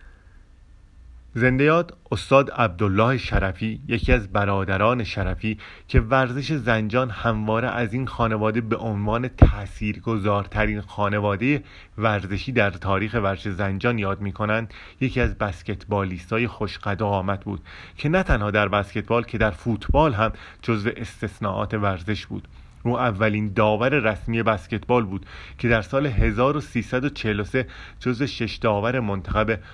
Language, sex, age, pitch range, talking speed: Persian, male, 30-49, 95-115 Hz, 125 wpm